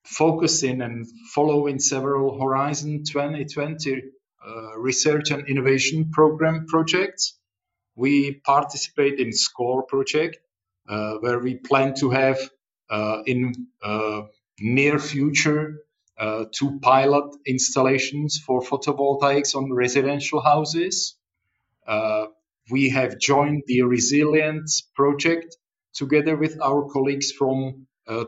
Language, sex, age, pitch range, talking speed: English, male, 40-59, 130-150 Hz, 105 wpm